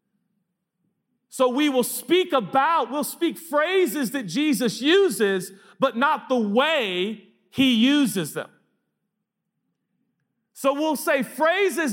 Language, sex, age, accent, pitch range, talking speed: English, male, 40-59, American, 200-275 Hz, 110 wpm